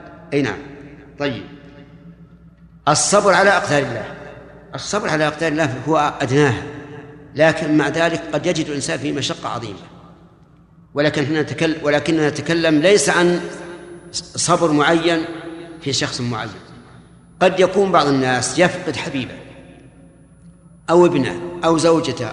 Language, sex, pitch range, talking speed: Arabic, male, 145-170 Hz, 115 wpm